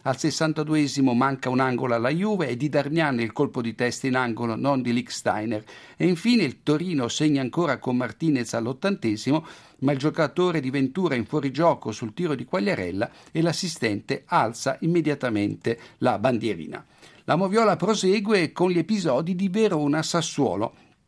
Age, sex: 60-79, male